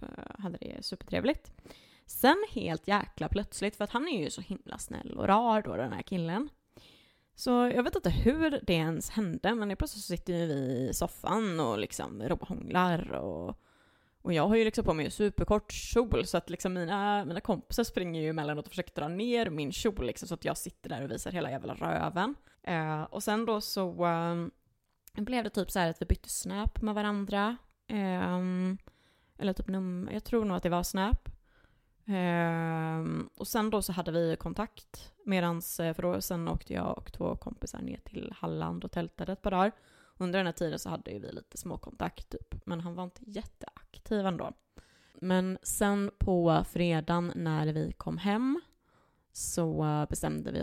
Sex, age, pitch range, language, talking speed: female, 20-39, 165-210 Hz, Swedish, 190 wpm